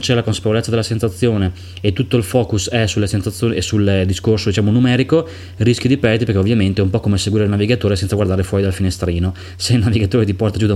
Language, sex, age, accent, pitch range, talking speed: Italian, male, 20-39, native, 95-115 Hz, 230 wpm